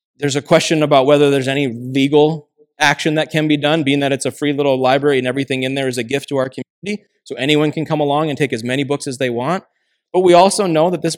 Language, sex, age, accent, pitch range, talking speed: English, male, 20-39, American, 135-165 Hz, 265 wpm